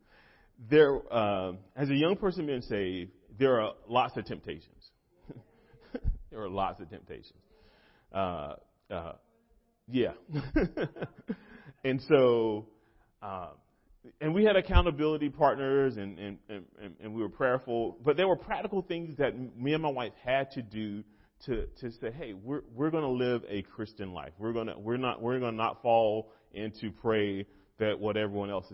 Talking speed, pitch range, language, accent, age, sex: 155 wpm, 100-135 Hz, English, American, 40-59, male